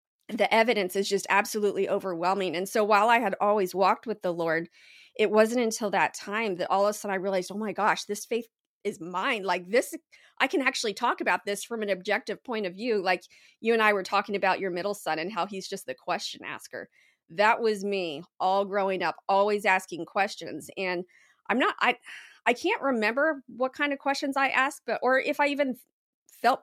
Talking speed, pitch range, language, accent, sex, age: 210 wpm, 185-225 Hz, English, American, female, 40-59